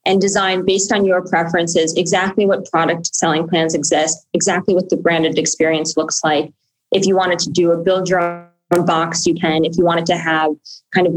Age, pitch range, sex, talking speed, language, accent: 20-39, 170-210 Hz, female, 205 wpm, English, American